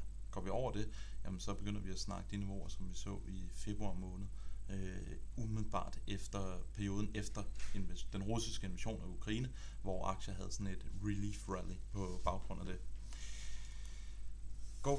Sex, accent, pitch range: male, native, 95-110 Hz